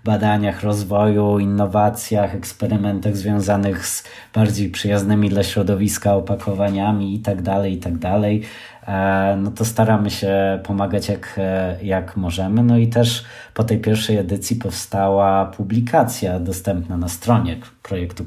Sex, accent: male, native